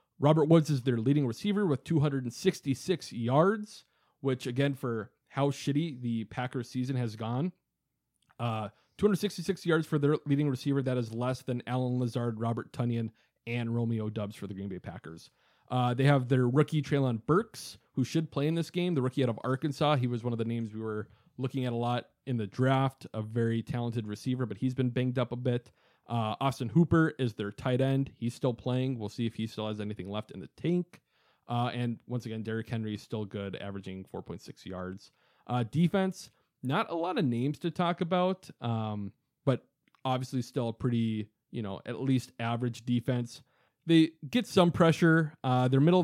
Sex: male